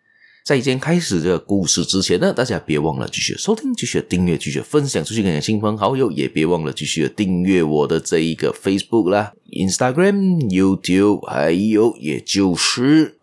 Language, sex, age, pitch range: Chinese, male, 20-39, 80-110 Hz